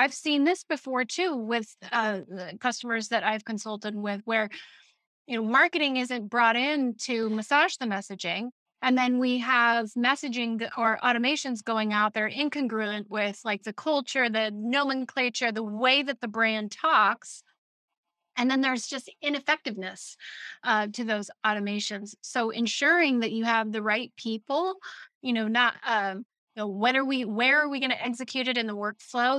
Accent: American